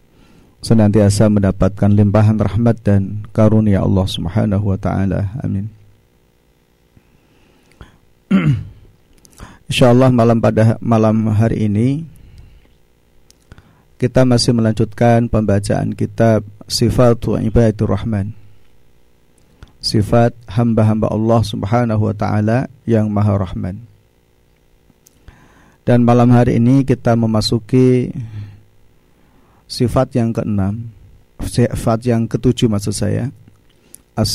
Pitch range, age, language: 100-120 Hz, 40-59, Indonesian